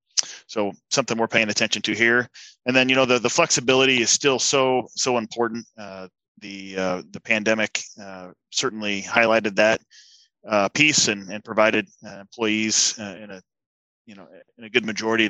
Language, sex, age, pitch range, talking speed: English, male, 30-49, 100-120 Hz, 175 wpm